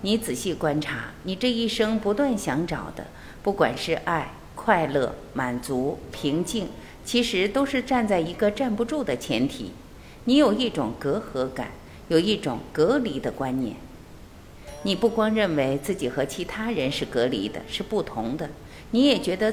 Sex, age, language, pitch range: female, 50-69, Chinese, 135-230 Hz